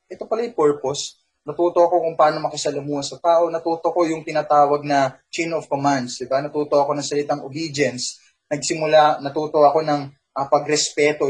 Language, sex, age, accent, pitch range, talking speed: Filipino, male, 20-39, native, 135-175 Hz, 160 wpm